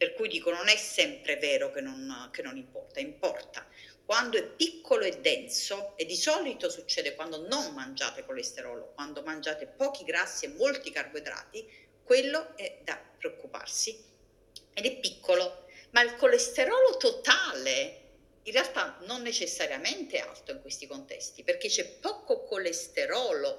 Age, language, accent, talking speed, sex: 50-69, Italian, native, 140 wpm, female